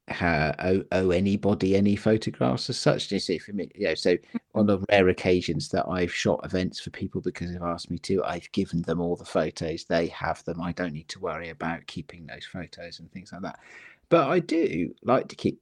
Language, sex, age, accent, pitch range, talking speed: English, male, 40-59, British, 85-110 Hz, 215 wpm